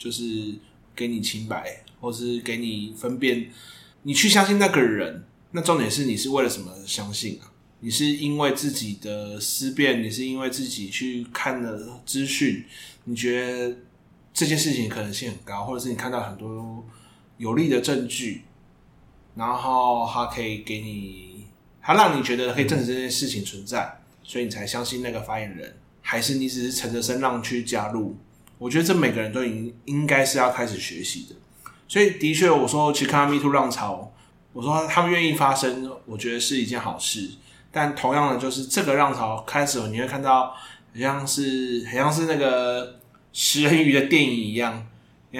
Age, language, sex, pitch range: 20-39, Chinese, male, 115-140 Hz